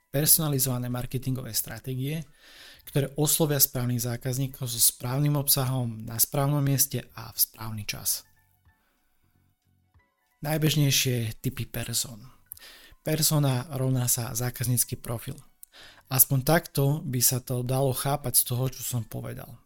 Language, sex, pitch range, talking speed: Slovak, male, 115-140 Hz, 115 wpm